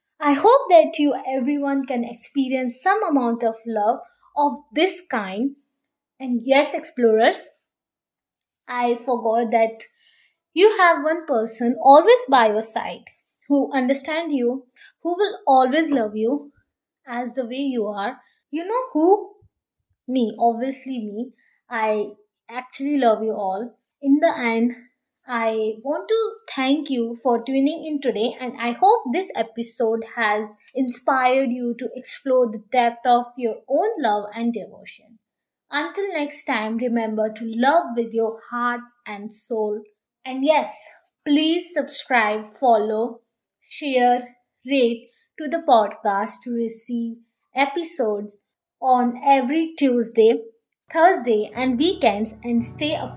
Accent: Indian